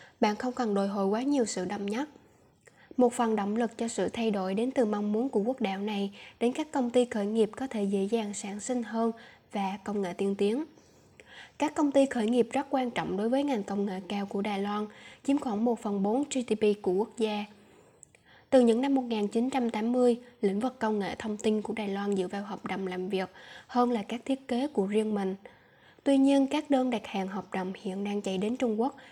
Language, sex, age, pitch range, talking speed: Vietnamese, female, 10-29, 200-250 Hz, 230 wpm